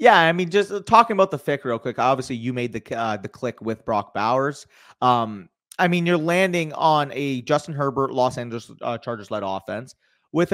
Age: 30-49